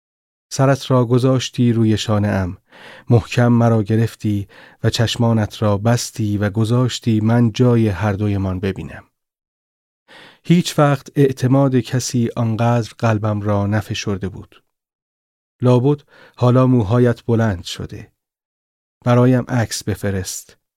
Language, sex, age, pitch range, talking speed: Persian, male, 30-49, 105-125 Hz, 105 wpm